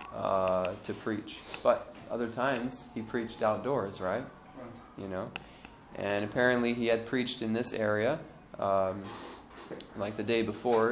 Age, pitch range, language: 20-39, 100-115 Hz, English